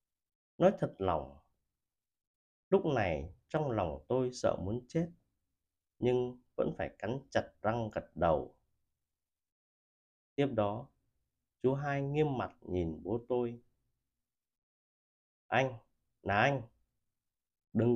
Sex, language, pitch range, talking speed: male, Vietnamese, 95-130 Hz, 105 wpm